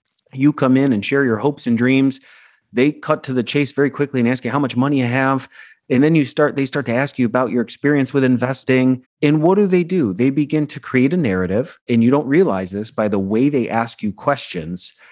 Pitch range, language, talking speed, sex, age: 110-145 Hz, English, 240 wpm, male, 30-49